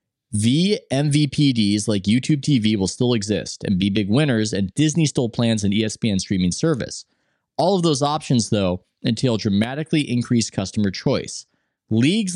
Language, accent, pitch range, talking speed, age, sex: English, American, 100-135 Hz, 150 wpm, 20-39, male